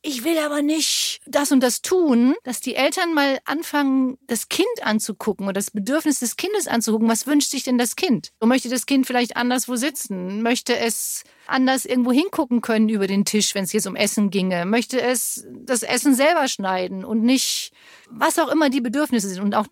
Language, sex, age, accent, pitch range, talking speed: German, female, 40-59, German, 225-275 Hz, 200 wpm